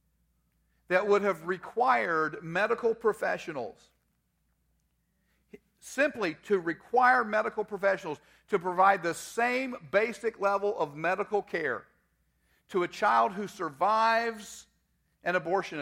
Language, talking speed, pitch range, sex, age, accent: English, 100 wpm, 150-205 Hz, male, 50-69, American